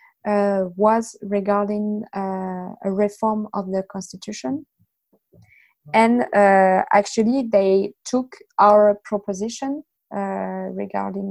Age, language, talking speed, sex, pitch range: 20-39, English, 95 wpm, female, 195-220 Hz